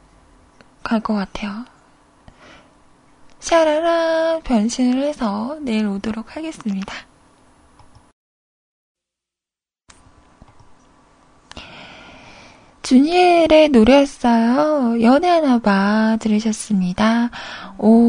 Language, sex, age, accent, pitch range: Korean, female, 20-39, native, 220-300 Hz